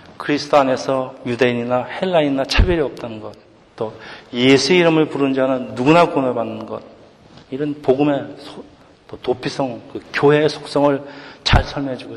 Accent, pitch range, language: native, 120-150 Hz, Korean